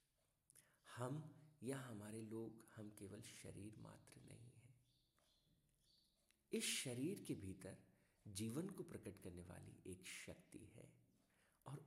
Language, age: Hindi, 50-69